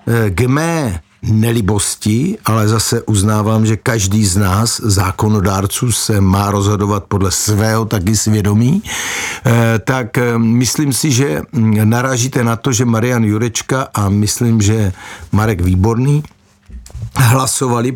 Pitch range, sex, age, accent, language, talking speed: 110-135 Hz, male, 60-79, native, Czech, 115 wpm